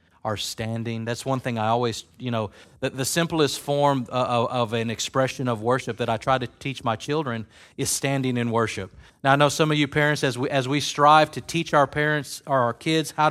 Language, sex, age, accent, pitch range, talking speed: English, male, 30-49, American, 130-180 Hz, 230 wpm